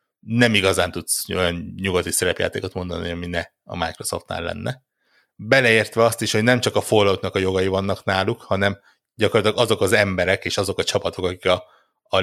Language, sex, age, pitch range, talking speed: Hungarian, male, 60-79, 90-120 Hz, 175 wpm